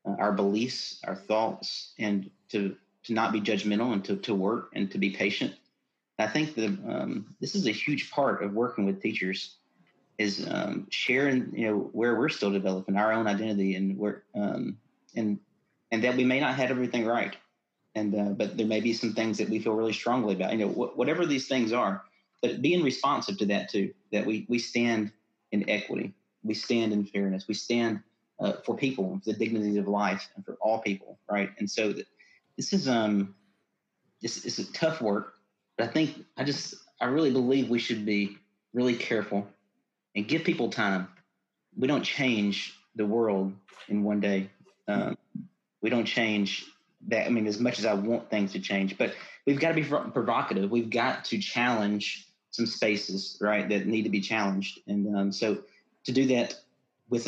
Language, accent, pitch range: English, American, 100-120 Hz